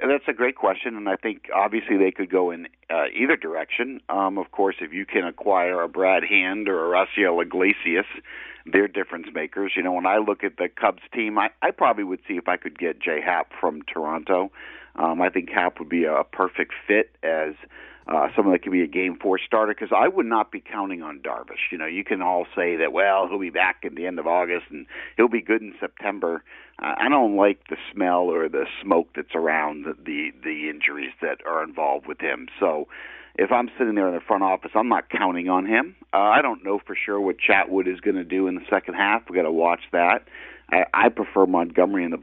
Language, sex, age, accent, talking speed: English, male, 50-69, American, 235 wpm